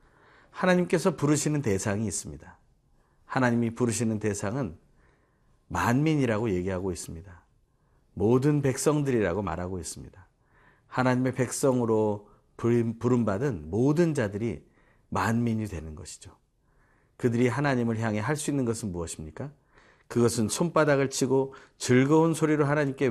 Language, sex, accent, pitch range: Korean, male, native, 95-140 Hz